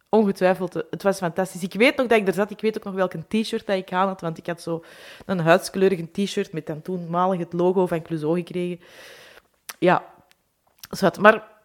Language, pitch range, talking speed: Dutch, 170-215 Hz, 195 wpm